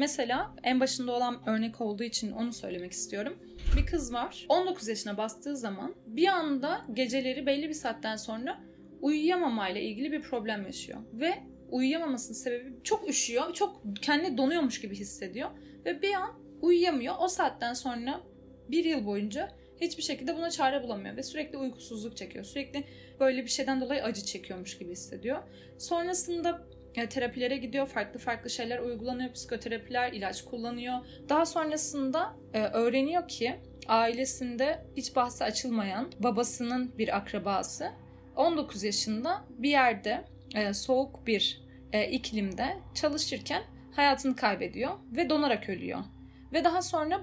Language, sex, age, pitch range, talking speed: Turkish, female, 10-29, 230-295 Hz, 135 wpm